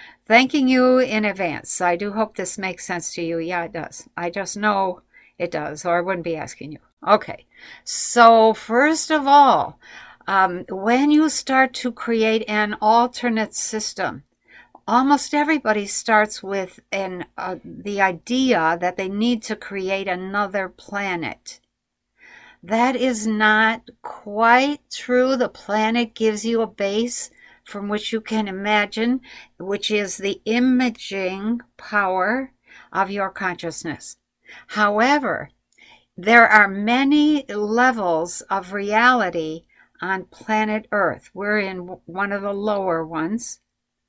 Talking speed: 130 wpm